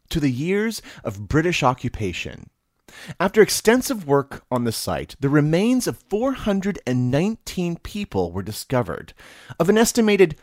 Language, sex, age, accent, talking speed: English, male, 30-49, American, 125 wpm